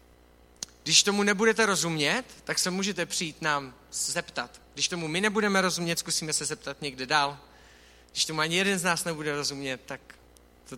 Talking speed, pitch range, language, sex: 165 wpm, 135-180 Hz, Czech, male